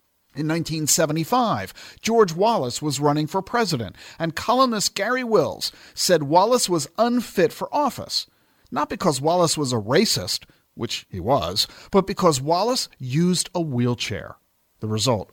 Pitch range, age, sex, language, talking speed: 125-185 Hz, 50-69, male, English, 135 wpm